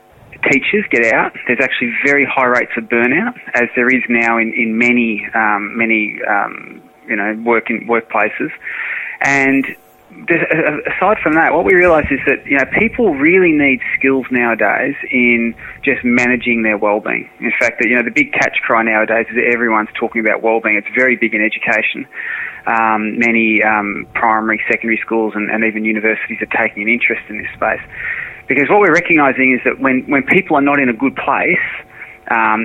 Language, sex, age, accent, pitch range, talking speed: English, male, 20-39, Australian, 110-130 Hz, 185 wpm